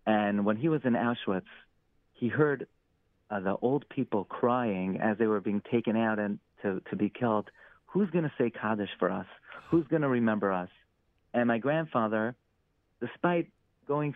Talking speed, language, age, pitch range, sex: 175 wpm, English, 40-59, 110-135 Hz, male